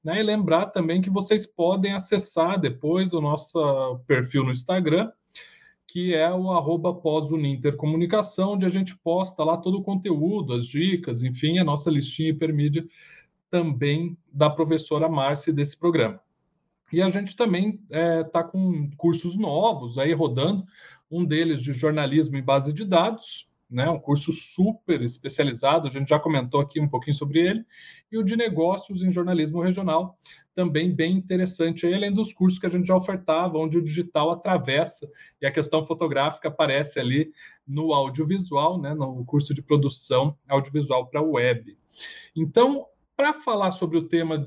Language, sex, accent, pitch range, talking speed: Portuguese, male, Brazilian, 150-185 Hz, 160 wpm